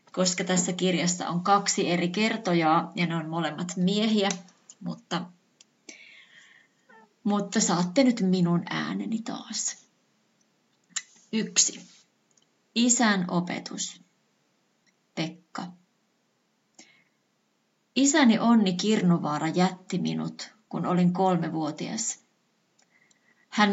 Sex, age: female, 30-49